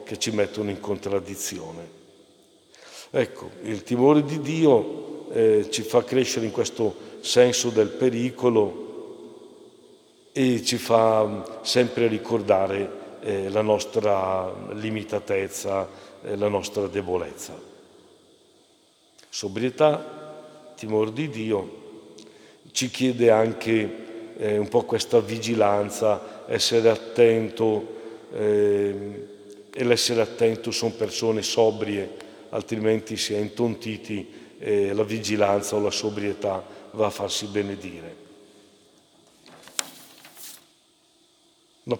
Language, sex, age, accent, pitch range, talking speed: Italian, male, 60-79, native, 105-145 Hz, 95 wpm